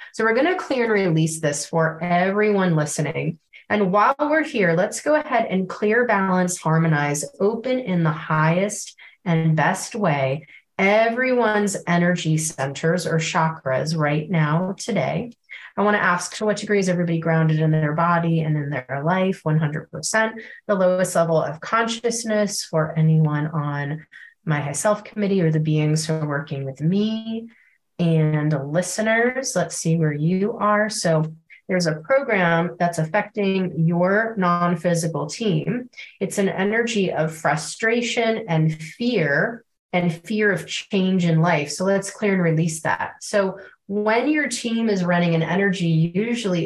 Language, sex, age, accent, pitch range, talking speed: English, female, 30-49, American, 160-205 Hz, 150 wpm